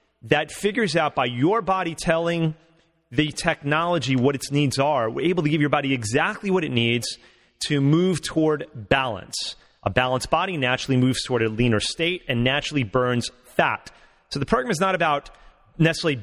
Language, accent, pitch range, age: English, American, 130-160 Hz, 30-49